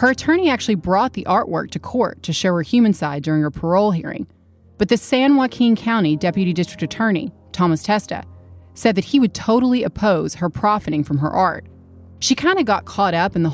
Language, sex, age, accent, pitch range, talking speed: English, female, 30-49, American, 160-210 Hz, 205 wpm